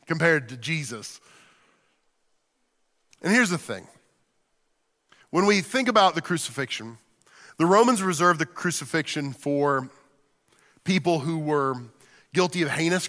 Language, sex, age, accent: English, male, 40-59, American